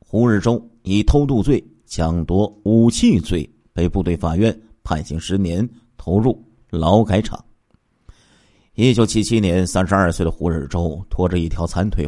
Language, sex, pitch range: Chinese, male, 85-115 Hz